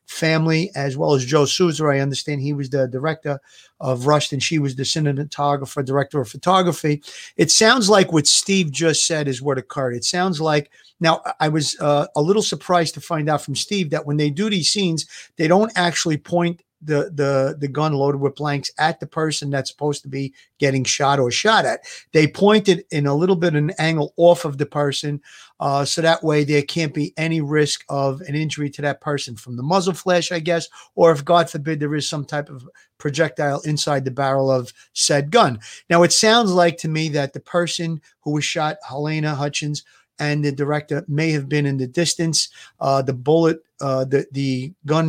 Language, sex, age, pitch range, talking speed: English, male, 50-69, 145-165 Hz, 210 wpm